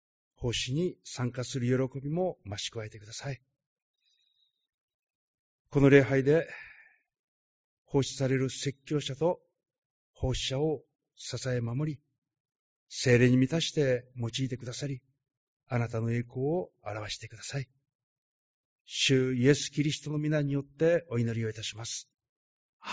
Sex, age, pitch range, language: male, 50-69, 120-140 Hz, Japanese